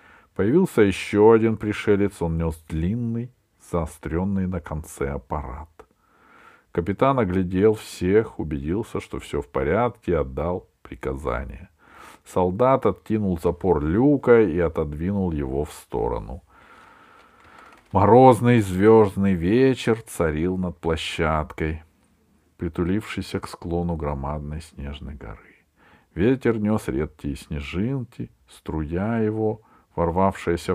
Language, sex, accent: Russian, male, native